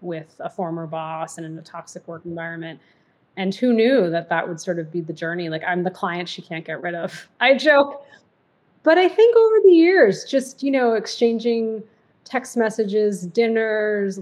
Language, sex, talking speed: English, female, 190 wpm